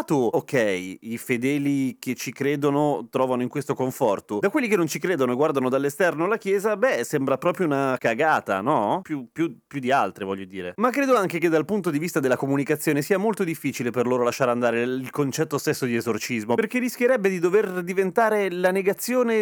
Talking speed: 190 wpm